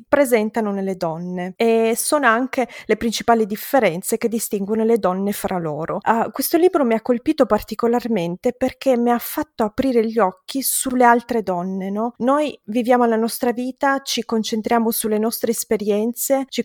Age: 20-39